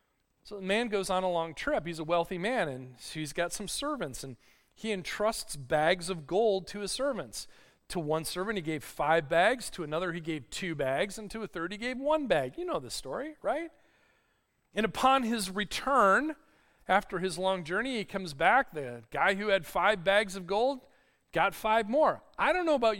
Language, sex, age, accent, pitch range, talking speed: English, male, 40-59, American, 170-250 Hz, 205 wpm